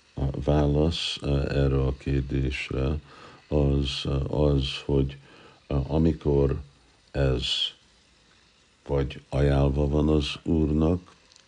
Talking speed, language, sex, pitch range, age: 80 wpm, Hungarian, male, 65-75 Hz, 60-79